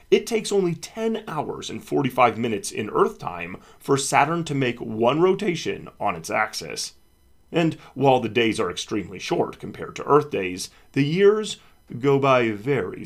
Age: 30-49